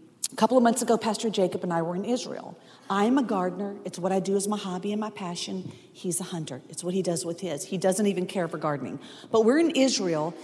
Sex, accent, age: female, American, 40-59